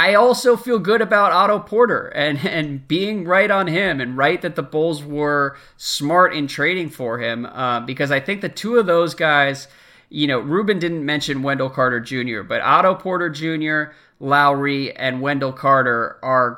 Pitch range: 130-175 Hz